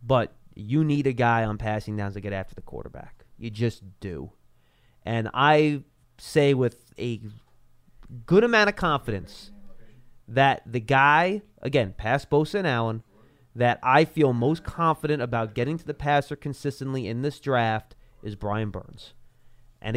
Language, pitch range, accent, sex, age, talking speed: English, 115-160 Hz, American, male, 30-49, 155 wpm